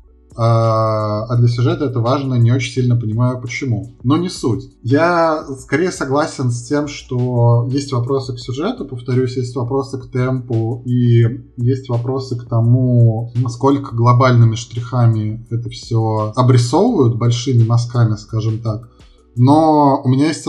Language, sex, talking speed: Russian, male, 140 wpm